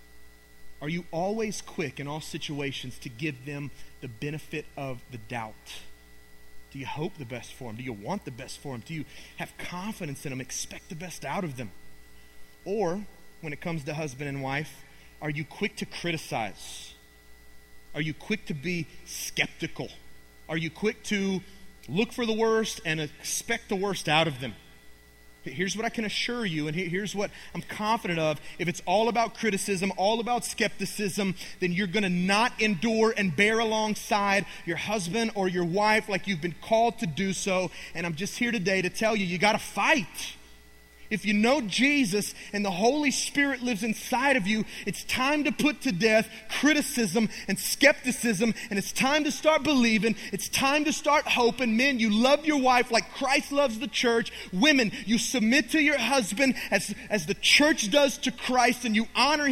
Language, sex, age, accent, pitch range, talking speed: English, male, 30-49, American, 155-235 Hz, 190 wpm